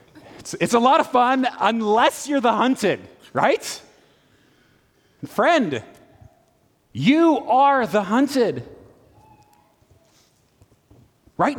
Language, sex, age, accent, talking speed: English, male, 30-49, American, 85 wpm